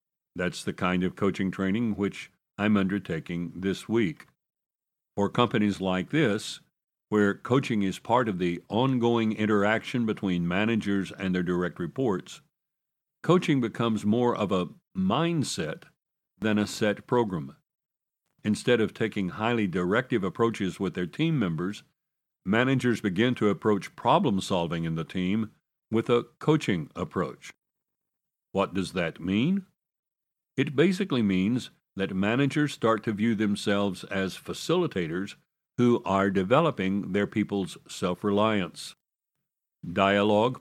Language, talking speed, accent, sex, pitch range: English, 125 wpm, American, male, 95-120 Hz